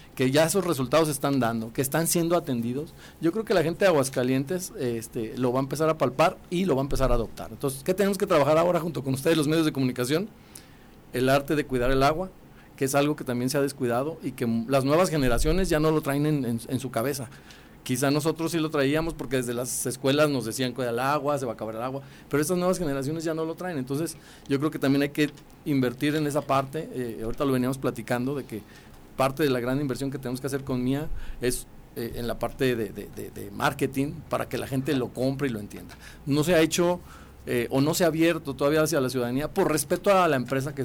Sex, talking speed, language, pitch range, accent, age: male, 245 wpm, Spanish, 125-155 Hz, Mexican, 40-59